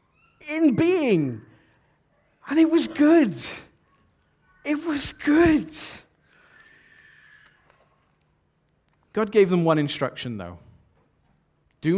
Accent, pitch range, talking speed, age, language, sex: British, 115-180 Hz, 80 wpm, 40-59, English, male